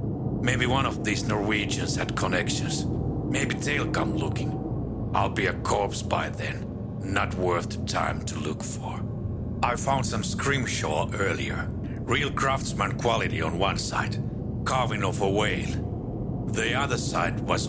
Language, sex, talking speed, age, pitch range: English, male, 145 wpm, 60-79, 100-115 Hz